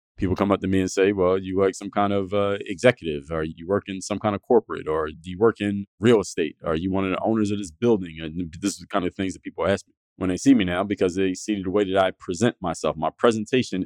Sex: male